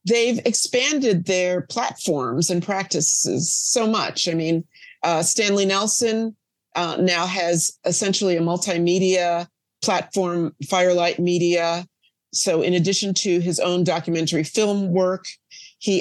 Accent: American